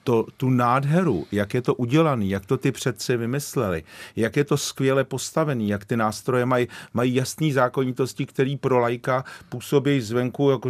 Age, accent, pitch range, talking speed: 40-59, native, 110-135 Hz, 170 wpm